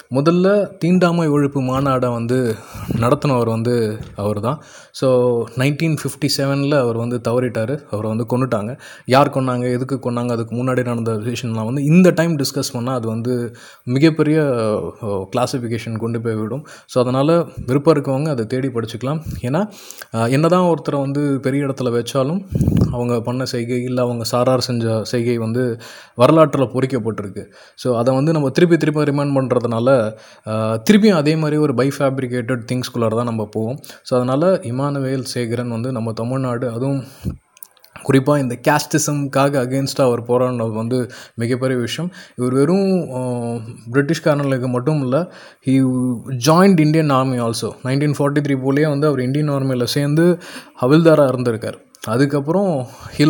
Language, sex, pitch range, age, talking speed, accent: Tamil, male, 120-145 Hz, 20-39, 130 wpm, native